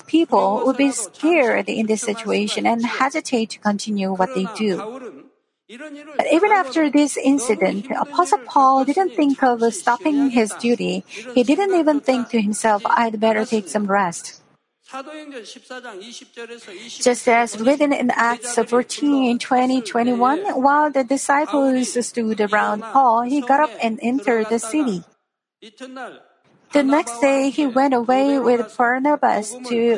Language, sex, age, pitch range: Korean, female, 40-59, 230-290 Hz